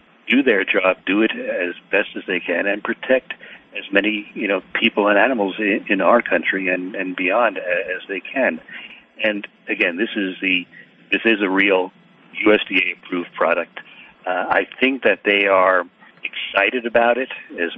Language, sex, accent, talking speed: English, male, American, 170 wpm